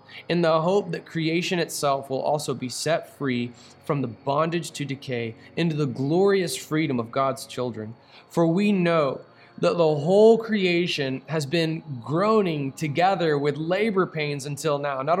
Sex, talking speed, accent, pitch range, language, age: male, 160 wpm, American, 125-165 Hz, English, 20-39